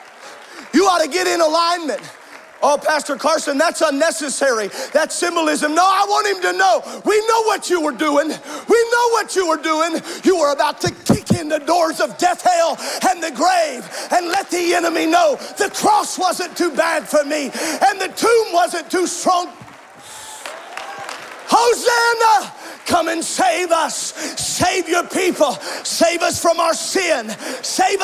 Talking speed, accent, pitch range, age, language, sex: 165 wpm, American, 295-370 Hz, 40-59, English, male